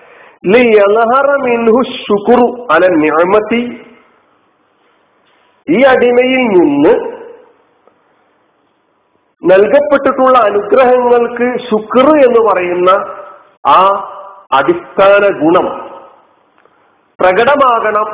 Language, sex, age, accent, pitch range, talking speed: Malayalam, male, 50-69, native, 195-280 Hz, 50 wpm